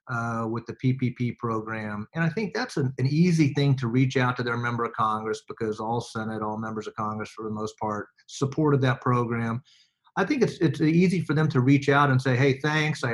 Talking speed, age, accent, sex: 230 wpm, 40-59, American, male